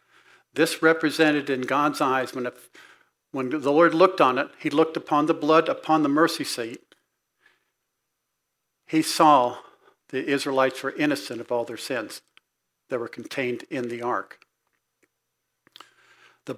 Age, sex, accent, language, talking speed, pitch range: 50-69, male, American, English, 140 wpm, 130-160 Hz